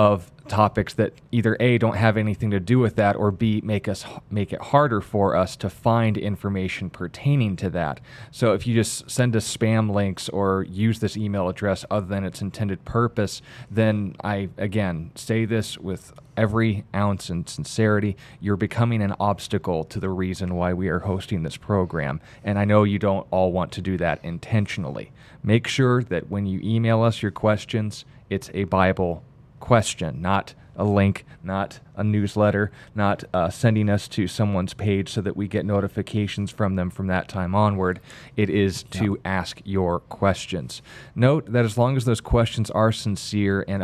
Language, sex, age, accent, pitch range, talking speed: English, male, 20-39, American, 95-115 Hz, 180 wpm